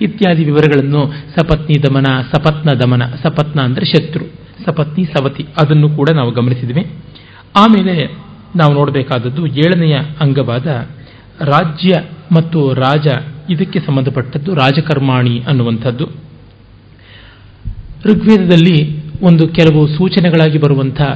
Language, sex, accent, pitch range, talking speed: Kannada, male, native, 130-160 Hz, 90 wpm